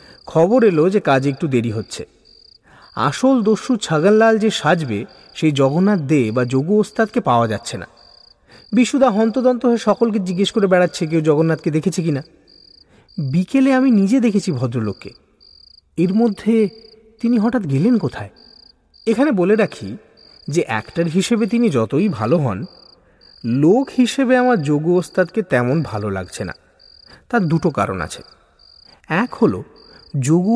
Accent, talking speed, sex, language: Indian, 95 wpm, male, English